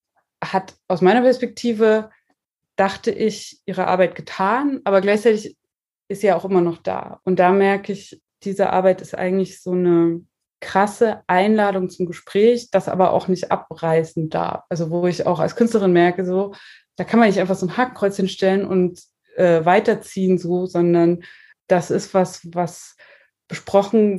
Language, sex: German, female